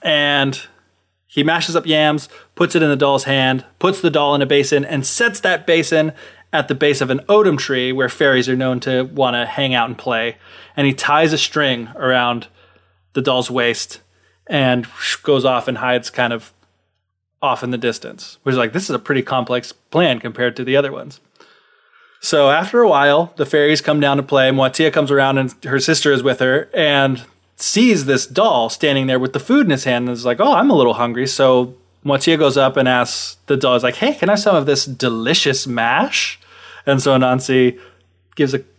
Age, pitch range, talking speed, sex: 20-39, 125-150 Hz, 210 wpm, male